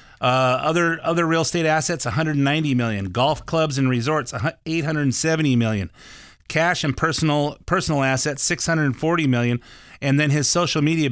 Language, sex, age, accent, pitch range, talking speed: English, male, 30-49, American, 115-155 Hz, 140 wpm